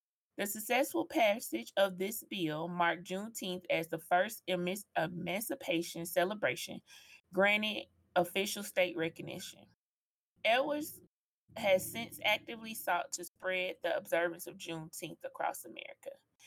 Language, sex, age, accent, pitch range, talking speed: English, female, 20-39, American, 170-200 Hz, 110 wpm